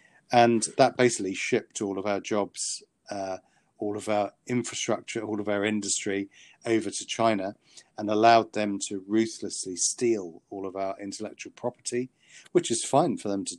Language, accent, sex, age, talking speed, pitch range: English, British, male, 40-59, 165 wpm, 100-115 Hz